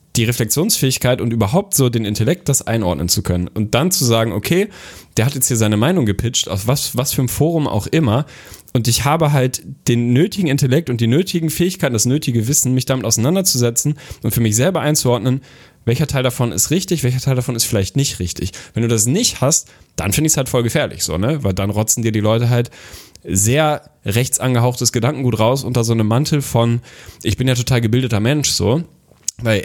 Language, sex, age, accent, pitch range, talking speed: German, male, 10-29, German, 105-135 Hz, 210 wpm